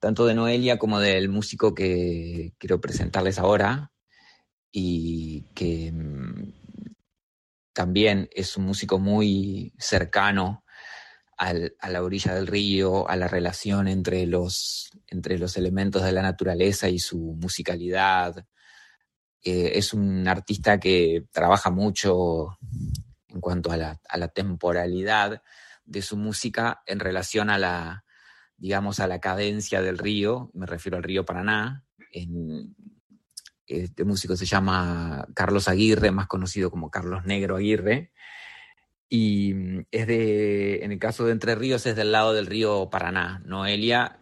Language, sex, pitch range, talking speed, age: English, male, 90-105 Hz, 130 wpm, 30-49